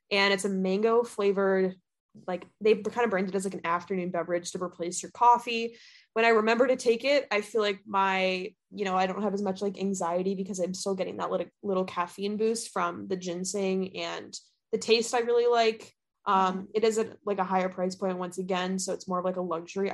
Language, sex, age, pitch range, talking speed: English, female, 20-39, 185-225 Hz, 220 wpm